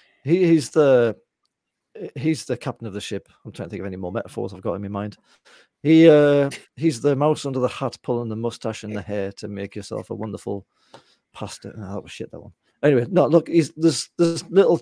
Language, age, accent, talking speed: English, 40-59, British, 220 wpm